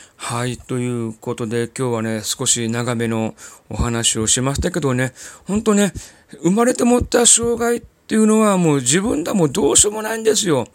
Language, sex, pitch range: Japanese, male, 120-195 Hz